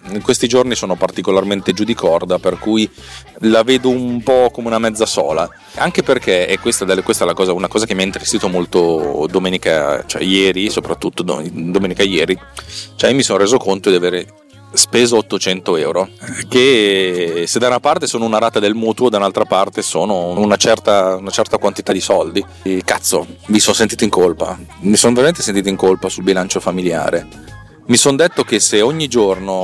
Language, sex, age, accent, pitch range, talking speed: Italian, male, 30-49, native, 95-110 Hz, 190 wpm